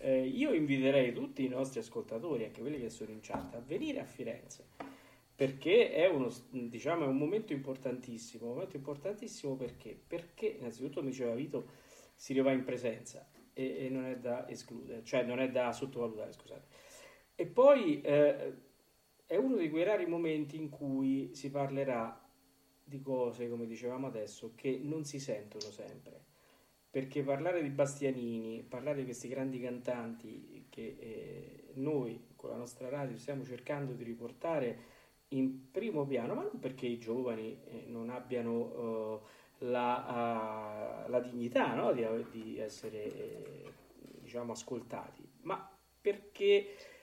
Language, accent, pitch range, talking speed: Italian, native, 120-145 Hz, 140 wpm